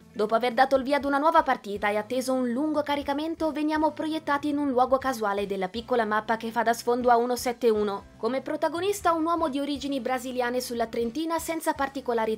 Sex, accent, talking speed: female, native, 195 wpm